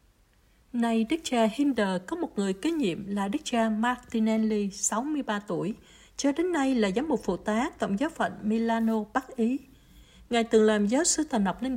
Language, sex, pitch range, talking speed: Vietnamese, female, 205-255 Hz, 190 wpm